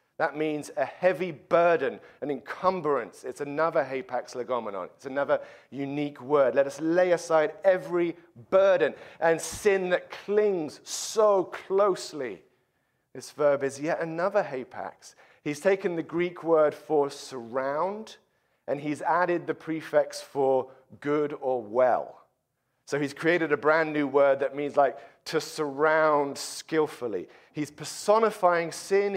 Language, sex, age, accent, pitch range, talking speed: English, male, 40-59, British, 145-190 Hz, 135 wpm